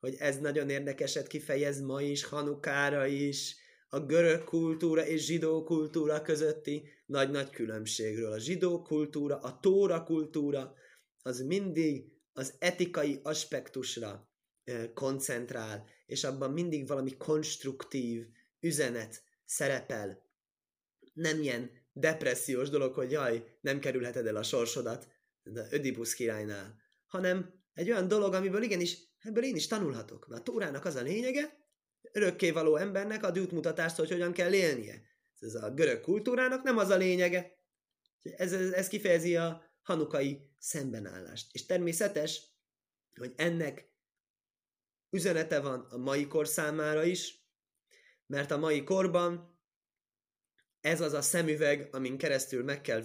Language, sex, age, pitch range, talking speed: Hungarian, male, 20-39, 135-175 Hz, 125 wpm